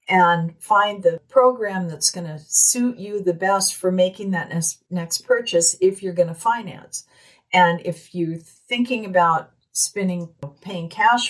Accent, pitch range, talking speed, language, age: American, 165-195 Hz, 155 wpm, English, 50-69